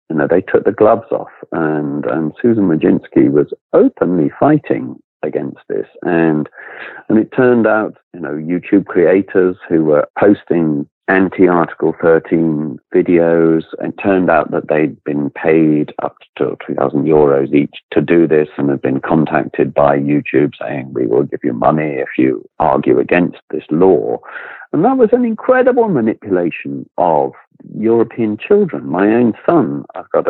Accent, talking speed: British, 155 wpm